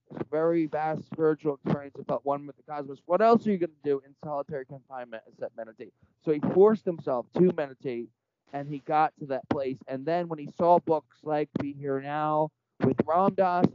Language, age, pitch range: English, 20-39, 130-175 Hz